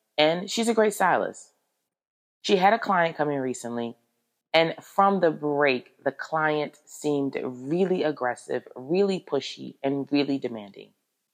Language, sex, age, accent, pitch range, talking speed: English, female, 30-49, American, 135-195 Hz, 140 wpm